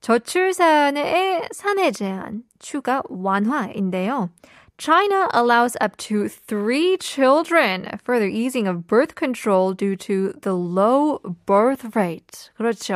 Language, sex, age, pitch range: Korean, female, 20-39, 205-295 Hz